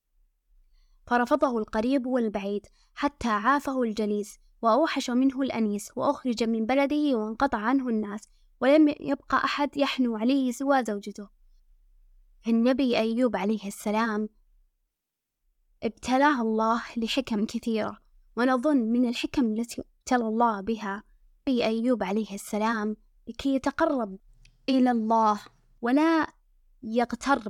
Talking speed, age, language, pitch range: 105 wpm, 20-39, Arabic, 220-260 Hz